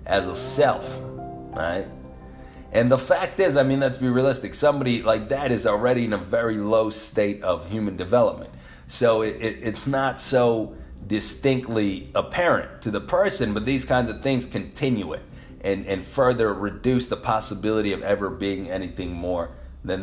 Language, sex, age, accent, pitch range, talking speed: English, male, 30-49, American, 95-115 Hz, 170 wpm